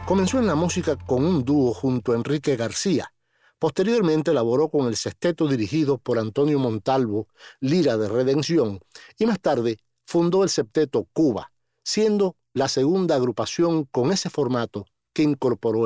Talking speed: 150 wpm